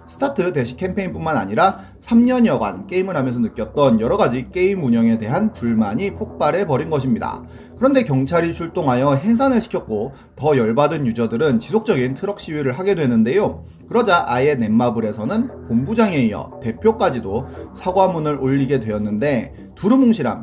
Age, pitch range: 30-49, 120-195 Hz